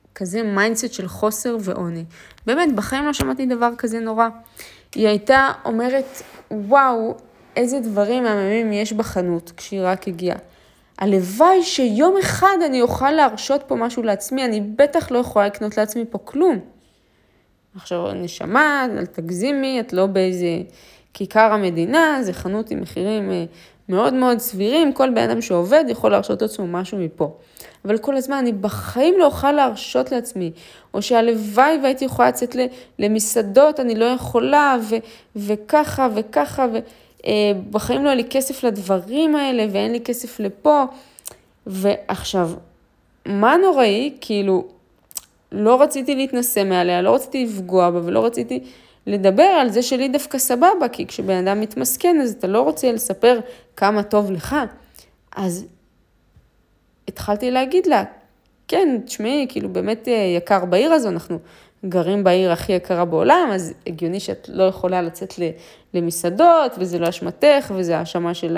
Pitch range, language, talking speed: 190-265 Hz, Hebrew, 140 wpm